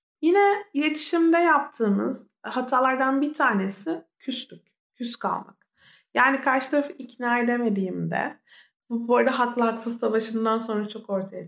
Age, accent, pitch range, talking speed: 30-49, native, 210-275 Hz, 110 wpm